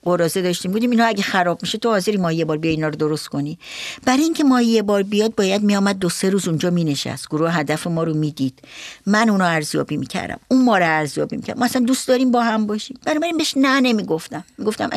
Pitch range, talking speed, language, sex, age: 170-235 Hz, 235 wpm, Persian, female, 60-79